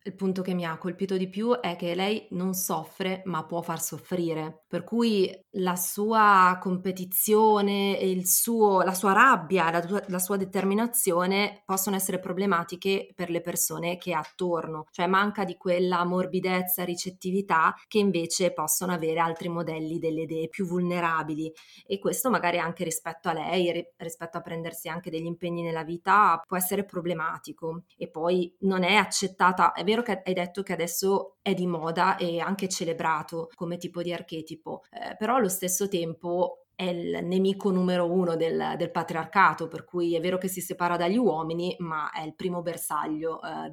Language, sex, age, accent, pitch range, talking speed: Italian, female, 30-49, native, 165-190 Hz, 170 wpm